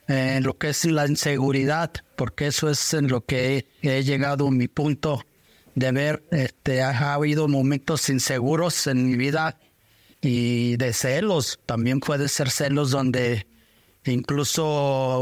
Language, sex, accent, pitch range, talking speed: Spanish, male, Mexican, 130-155 Hz, 145 wpm